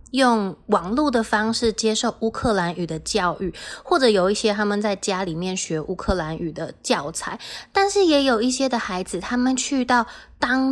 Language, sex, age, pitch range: Chinese, female, 20-39, 190-250 Hz